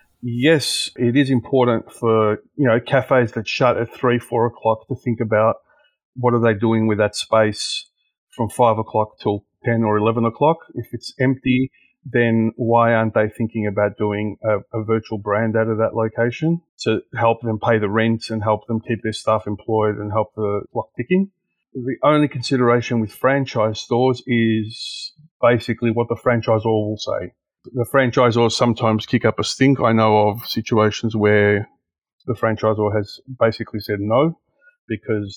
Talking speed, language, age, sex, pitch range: 170 wpm, English, 30-49, male, 110-125 Hz